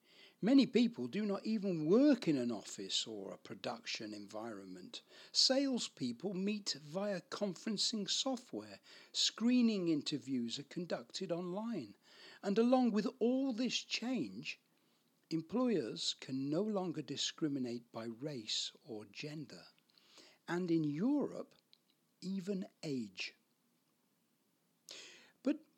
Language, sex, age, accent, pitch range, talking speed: English, male, 60-79, British, 155-230 Hz, 100 wpm